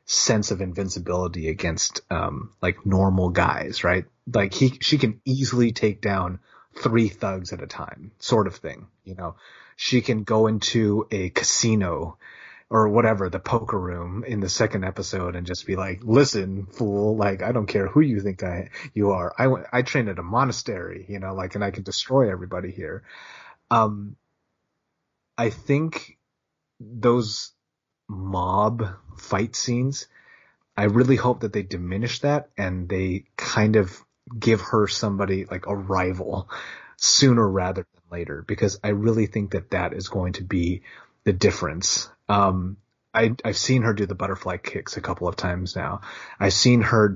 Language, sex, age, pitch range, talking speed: English, male, 30-49, 95-115 Hz, 165 wpm